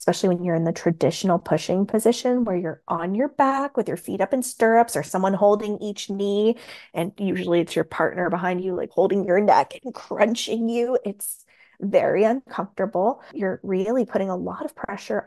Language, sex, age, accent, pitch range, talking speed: English, female, 20-39, American, 190-270 Hz, 190 wpm